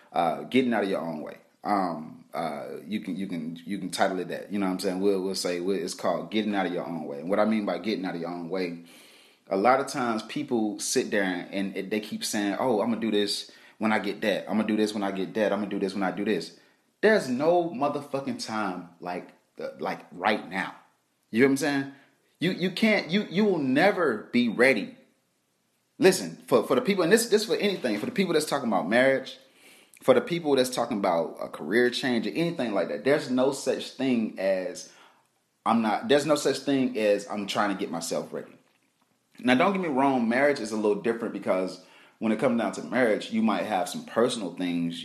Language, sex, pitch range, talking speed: English, male, 100-140 Hz, 240 wpm